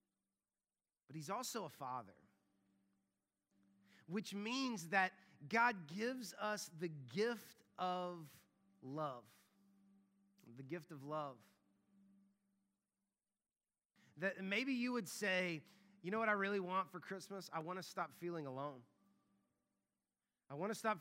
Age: 30-49